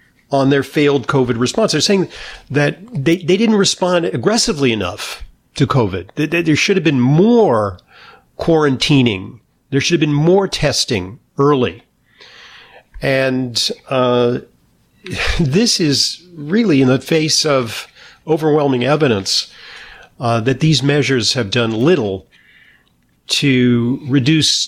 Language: English